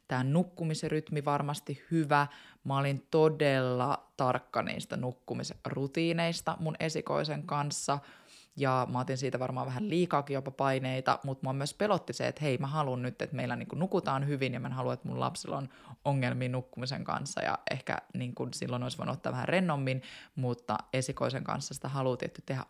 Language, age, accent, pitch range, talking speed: Finnish, 20-39, native, 130-150 Hz, 160 wpm